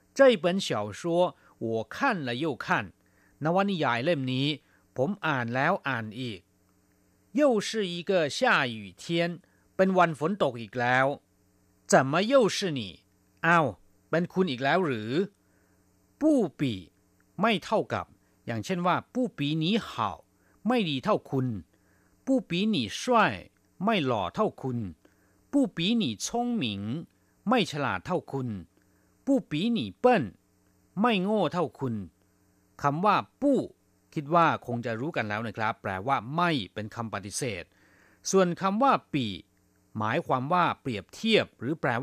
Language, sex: Thai, male